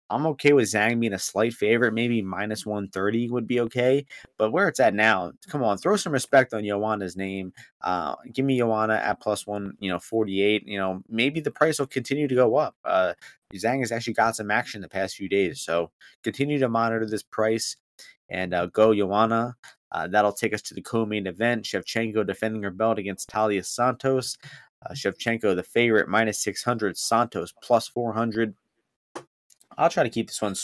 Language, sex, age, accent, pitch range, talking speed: English, male, 20-39, American, 100-120 Hz, 200 wpm